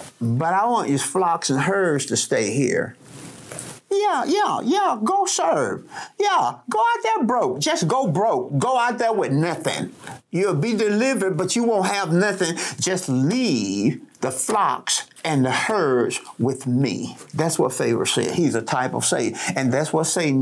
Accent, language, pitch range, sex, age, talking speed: American, English, 135-190 Hz, male, 50-69, 170 wpm